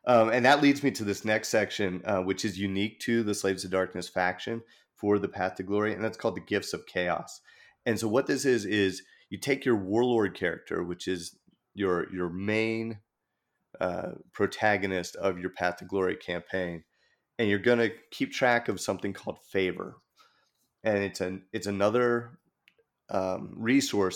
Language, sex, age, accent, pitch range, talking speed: English, male, 30-49, American, 95-110 Hz, 180 wpm